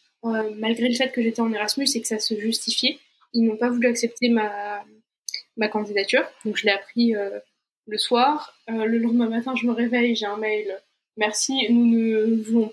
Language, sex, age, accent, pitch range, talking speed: French, female, 20-39, French, 215-245 Hz, 200 wpm